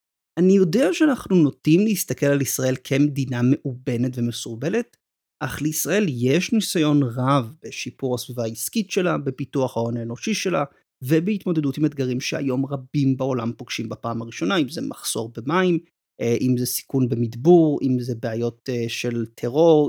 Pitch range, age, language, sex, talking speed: 125-160 Hz, 30-49, Hebrew, male, 135 wpm